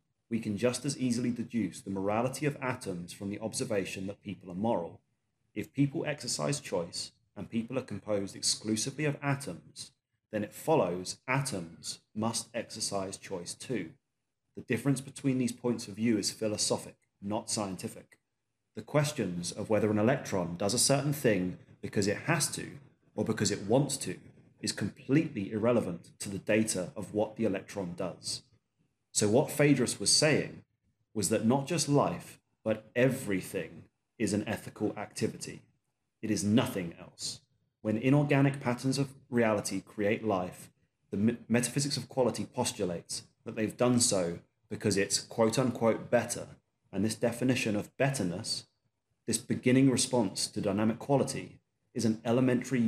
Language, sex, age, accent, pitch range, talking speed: English, male, 30-49, British, 105-130 Hz, 150 wpm